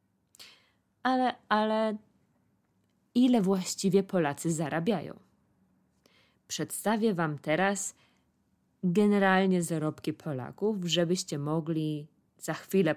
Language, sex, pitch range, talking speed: Polish, female, 145-185 Hz, 75 wpm